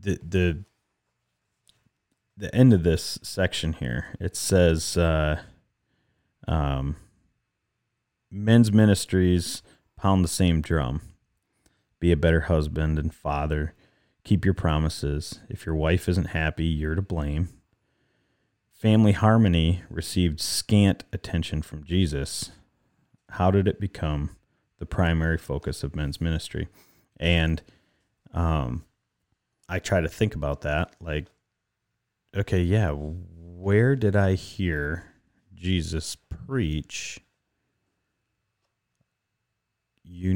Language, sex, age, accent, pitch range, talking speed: English, male, 30-49, American, 80-100 Hz, 105 wpm